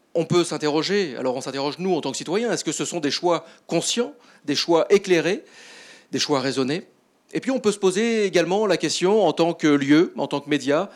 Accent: French